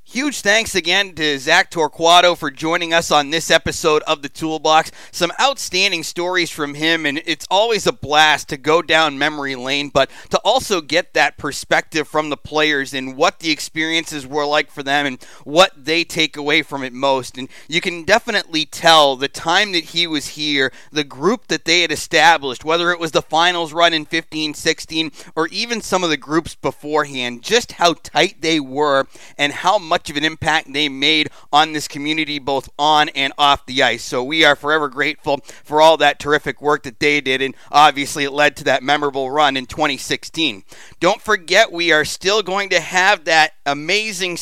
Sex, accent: male, American